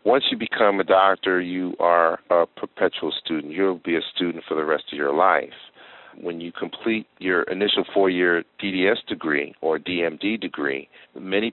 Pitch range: 80-95 Hz